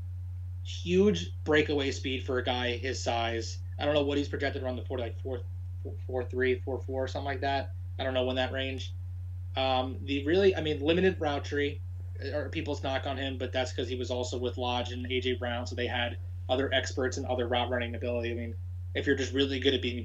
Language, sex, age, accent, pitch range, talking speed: English, male, 20-39, American, 90-120 Hz, 225 wpm